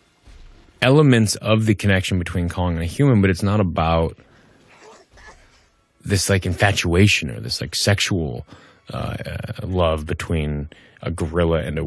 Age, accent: 20-39, American